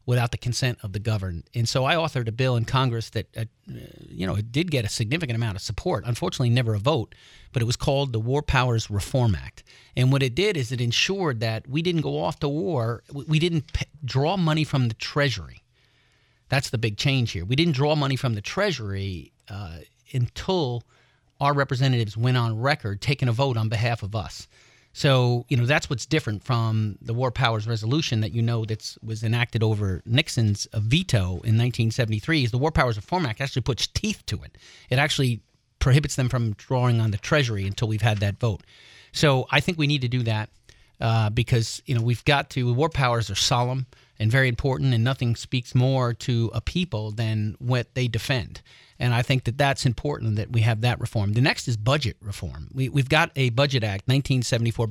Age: 40-59